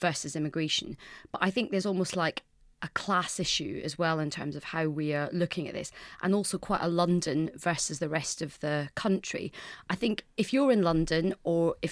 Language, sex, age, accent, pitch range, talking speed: English, female, 30-49, British, 160-185 Hz, 205 wpm